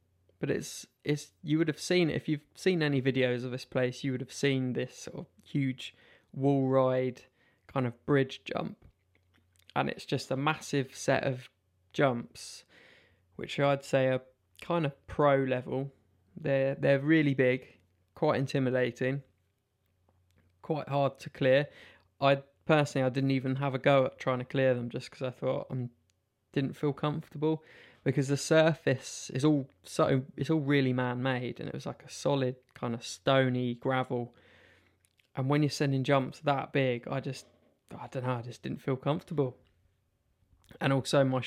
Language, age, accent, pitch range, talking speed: English, 20-39, British, 120-140 Hz, 170 wpm